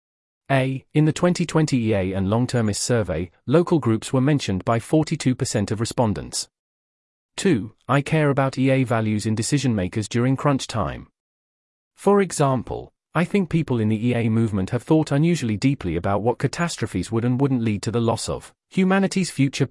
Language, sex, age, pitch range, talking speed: English, male, 40-59, 110-145 Hz, 165 wpm